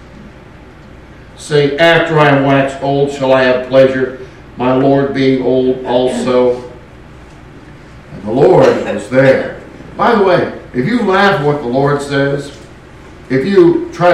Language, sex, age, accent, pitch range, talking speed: English, male, 60-79, American, 130-170 Hz, 145 wpm